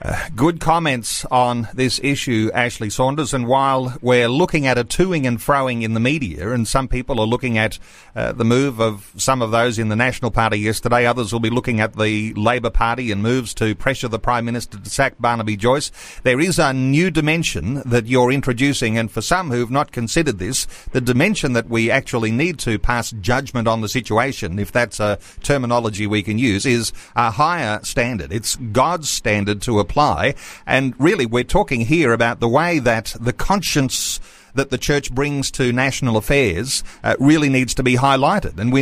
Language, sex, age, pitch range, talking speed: English, male, 40-59, 115-135 Hz, 200 wpm